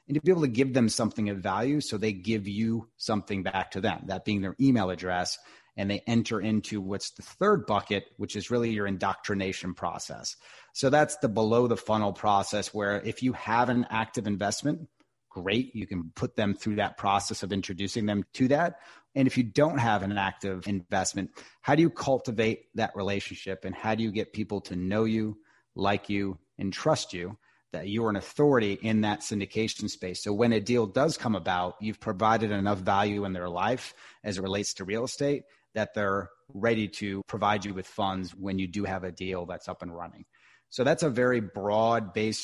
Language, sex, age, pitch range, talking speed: English, male, 30-49, 95-110 Hz, 205 wpm